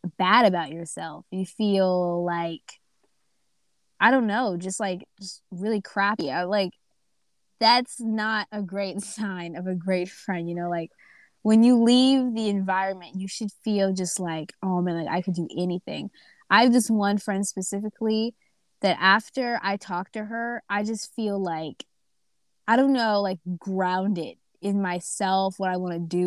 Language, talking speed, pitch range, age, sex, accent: English, 165 wpm, 175-210 Hz, 20-39, female, American